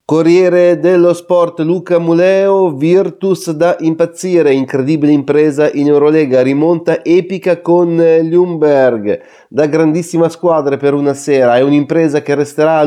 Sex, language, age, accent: male, Italian, 30-49, native